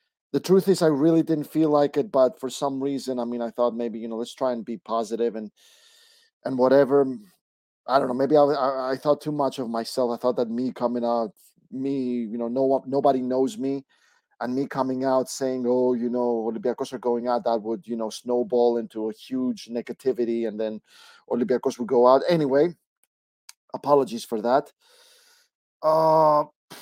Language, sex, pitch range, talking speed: English, male, 125-160 Hz, 190 wpm